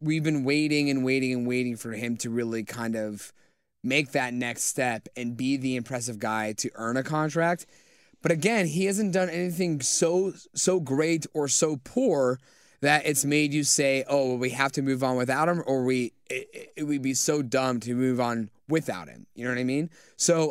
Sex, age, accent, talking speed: male, 20-39, American, 210 wpm